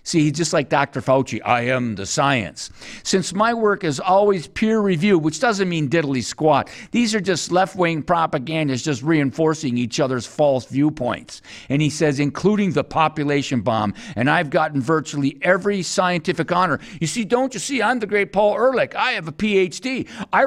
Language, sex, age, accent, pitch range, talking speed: English, male, 50-69, American, 140-195 Hz, 180 wpm